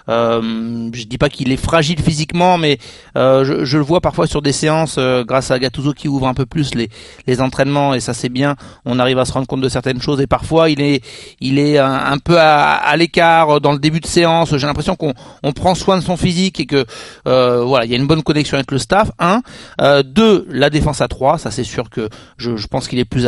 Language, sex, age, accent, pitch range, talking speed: French, male, 30-49, French, 130-165 Hz, 255 wpm